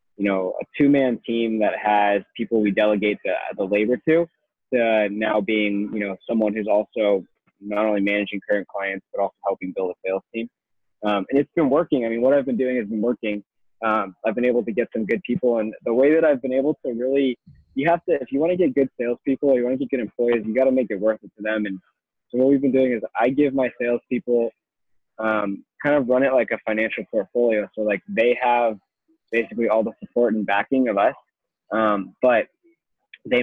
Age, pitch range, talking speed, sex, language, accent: 20-39, 105-125 Hz, 230 wpm, male, English, American